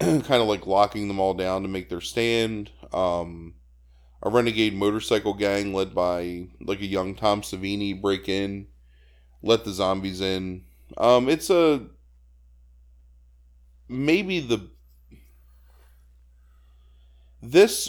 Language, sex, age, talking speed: English, male, 20-39, 115 wpm